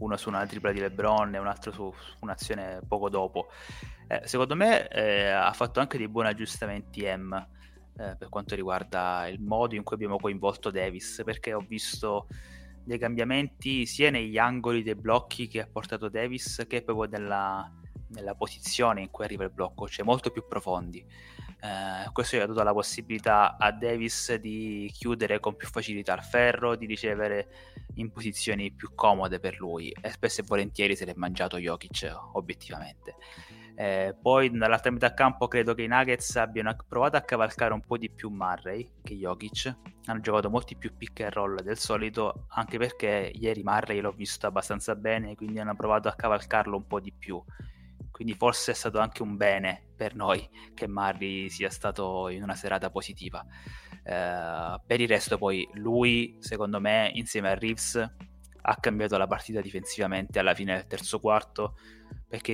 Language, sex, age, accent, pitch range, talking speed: Italian, male, 20-39, native, 100-115 Hz, 175 wpm